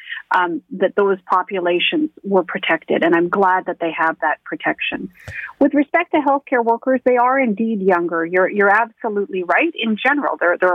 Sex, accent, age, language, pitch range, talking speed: female, American, 40-59, English, 190-230 Hz, 175 wpm